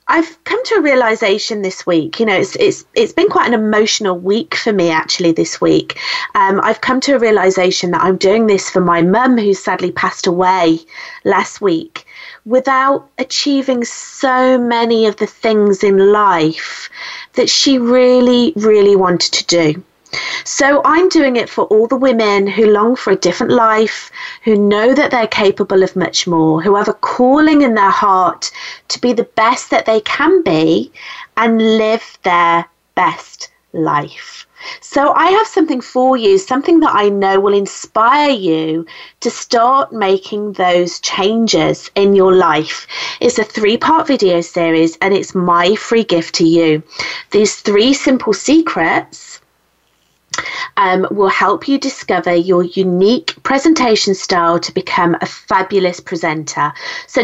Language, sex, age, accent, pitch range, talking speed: English, female, 30-49, British, 190-285 Hz, 160 wpm